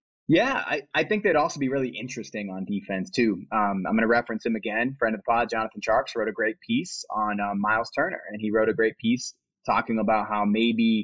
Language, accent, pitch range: English, American, 105-115 Hz